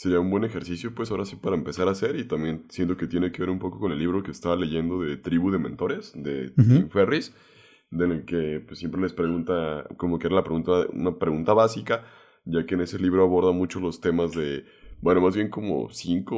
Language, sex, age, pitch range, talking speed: Spanish, male, 20-39, 85-95 Hz, 230 wpm